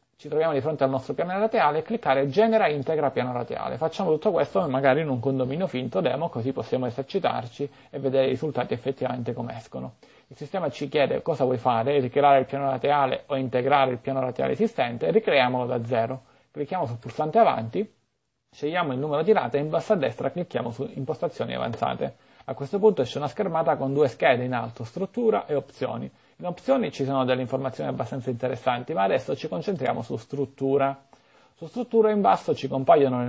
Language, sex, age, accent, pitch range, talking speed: Italian, male, 30-49, native, 125-165 Hz, 190 wpm